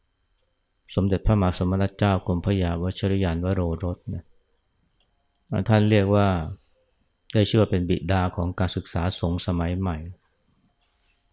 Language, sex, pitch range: Thai, male, 90-105 Hz